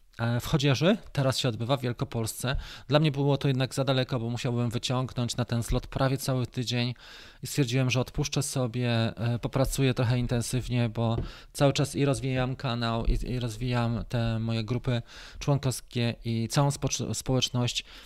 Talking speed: 160 wpm